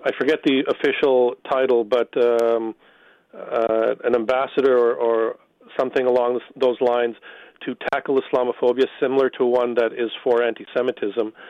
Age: 40-59